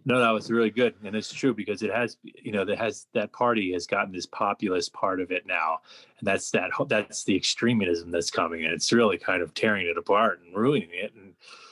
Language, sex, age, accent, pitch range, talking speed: English, male, 30-49, American, 105-145 Hz, 235 wpm